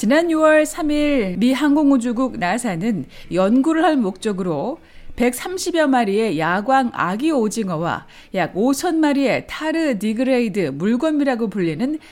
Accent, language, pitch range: native, Korean, 205-285 Hz